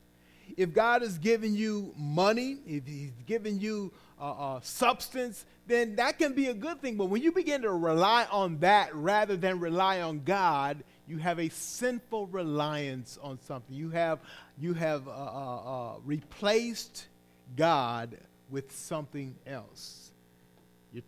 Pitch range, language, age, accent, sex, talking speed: 130-200 Hz, English, 40-59, American, male, 150 wpm